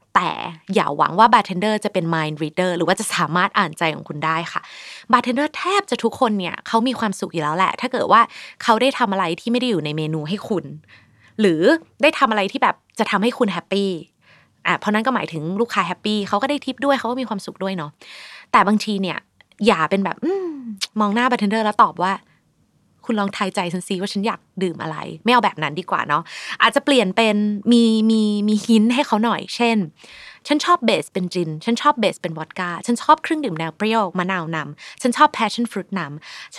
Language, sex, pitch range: Thai, female, 175-235 Hz